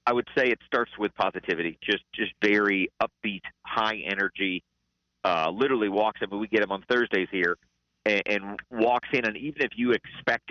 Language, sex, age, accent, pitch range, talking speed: English, male, 40-59, American, 80-110 Hz, 190 wpm